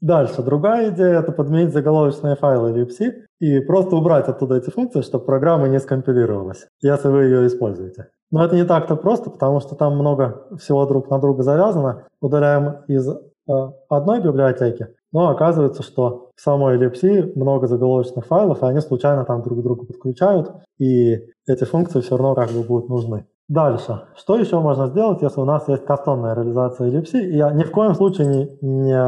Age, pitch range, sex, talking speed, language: 20-39, 130-160 Hz, male, 180 wpm, Russian